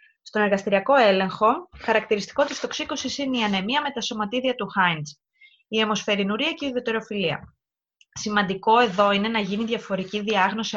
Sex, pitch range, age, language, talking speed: female, 185-240 Hz, 20-39, Greek, 145 wpm